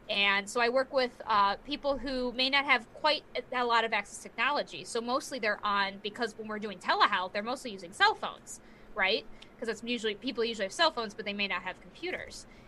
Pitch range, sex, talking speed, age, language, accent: 220-300 Hz, female, 225 wpm, 20-39, English, American